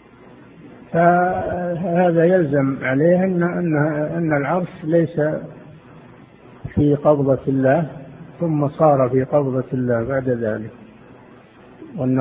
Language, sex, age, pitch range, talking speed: Arabic, male, 60-79, 130-145 Hz, 90 wpm